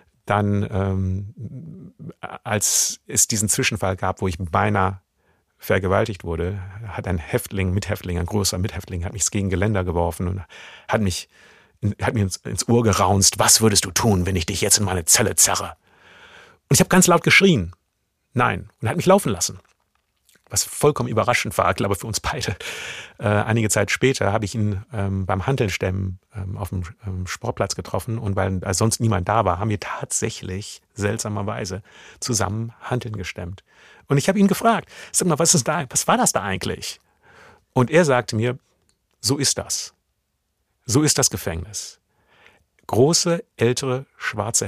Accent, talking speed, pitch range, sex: German, 165 wpm, 95-120 Hz, male